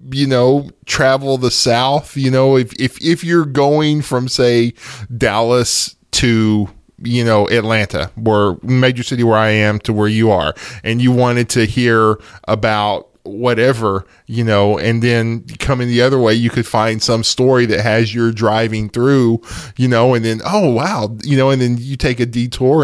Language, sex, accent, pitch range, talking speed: English, male, American, 110-130 Hz, 180 wpm